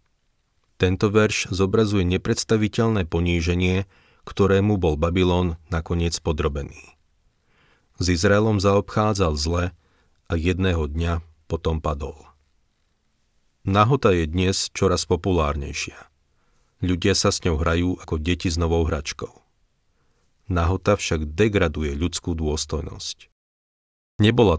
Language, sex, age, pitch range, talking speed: Slovak, male, 40-59, 80-95 Hz, 100 wpm